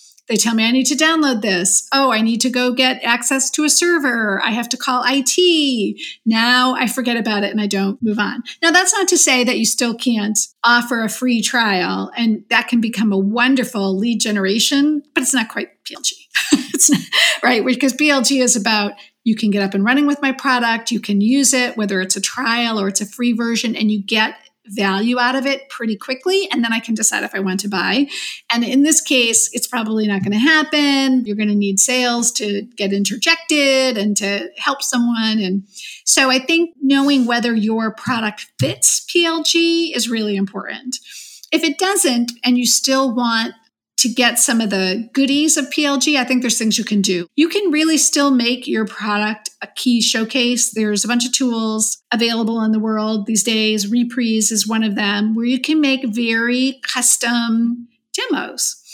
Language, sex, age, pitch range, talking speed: English, female, 40-59, 220-270 Hz, 200 wpm